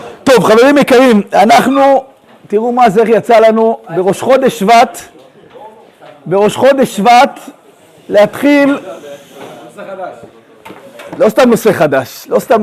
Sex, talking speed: male, 120 wpm